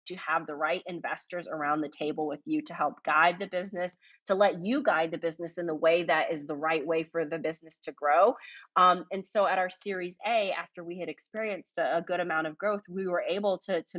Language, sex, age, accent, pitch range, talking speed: English, female, 30-49, American, 155-190 Hz, 240 wpm